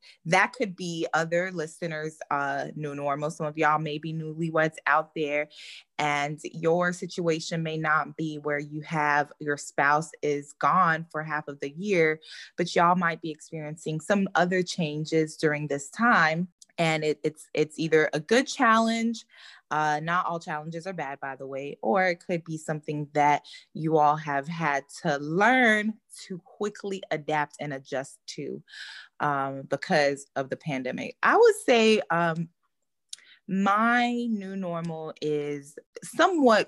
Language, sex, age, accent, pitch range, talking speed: English, female, 20-39, American, 145-175 Hz, 150 wpm